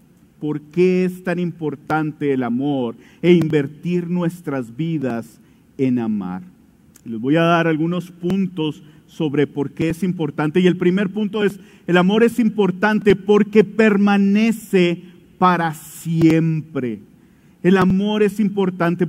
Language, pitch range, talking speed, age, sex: English, 160-195 Hz, 130 wpm, 50-69, male